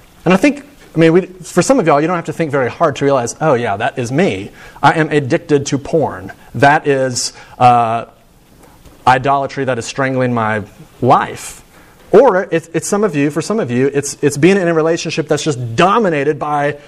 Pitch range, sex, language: 145-200 Hz, male, English